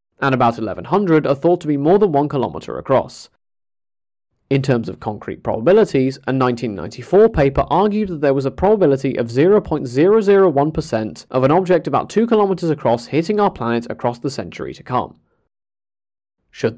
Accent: British